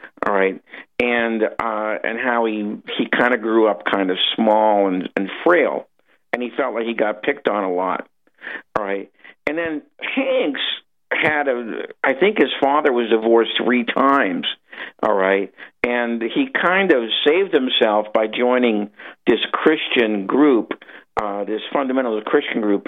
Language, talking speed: English, 155 wpm